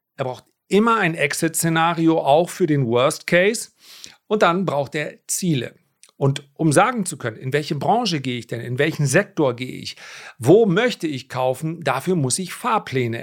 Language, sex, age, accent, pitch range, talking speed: German, male, 40-59, German, 140-185 Hz, 175 wpm